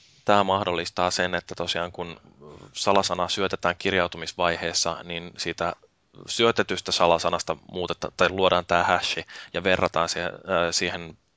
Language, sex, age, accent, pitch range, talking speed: Finnish, male, 20-39, native, 80-90 Hz, 110 wpm